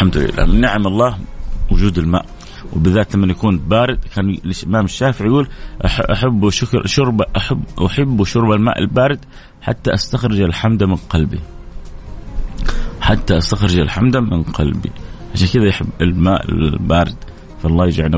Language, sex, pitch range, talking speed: Arabic, male, 90-125 Hz, 130 wpm